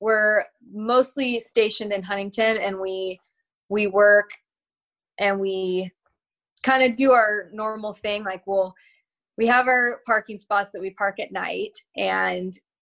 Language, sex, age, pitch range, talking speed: English, female, 20-39, 190-225 Hz, 140 wpm